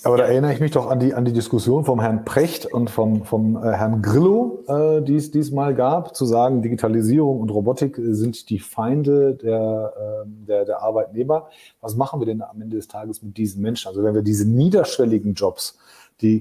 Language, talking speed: German, 200 wpm